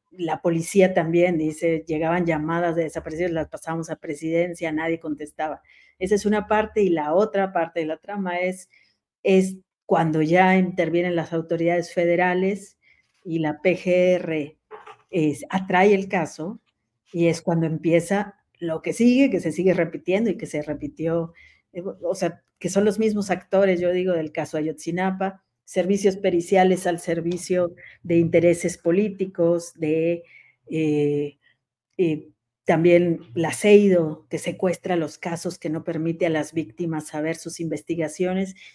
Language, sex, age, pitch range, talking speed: Spanish, female, 40-59, 160-190 Hz, 145 wpm